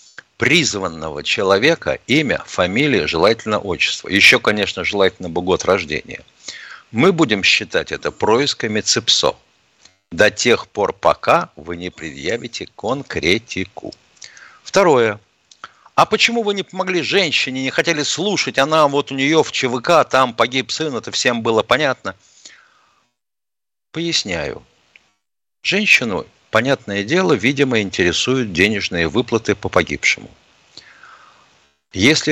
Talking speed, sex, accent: 110 wpm, male, native